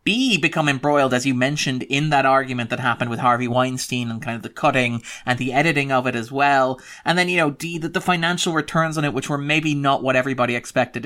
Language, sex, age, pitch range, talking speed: English, male, 30-49, 125-155 Hz, 235 wpm